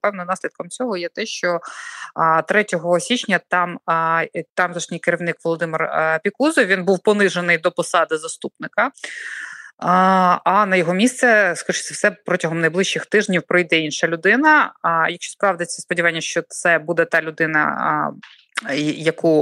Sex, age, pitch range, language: female, 20-39, 160-195 Hz, Ukrainian